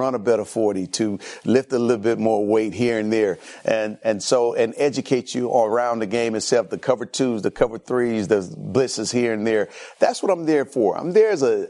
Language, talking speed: English, 225 wpm